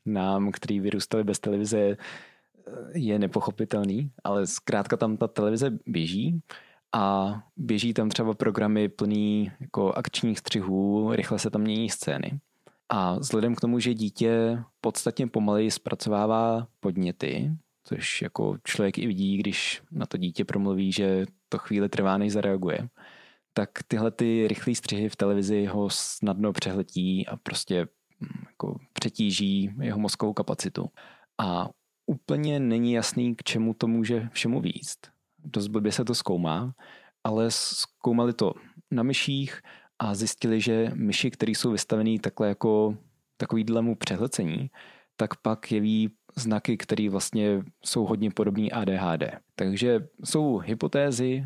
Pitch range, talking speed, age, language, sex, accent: 100-115 Hz, 135 wpm, 20-39, Czech, male, native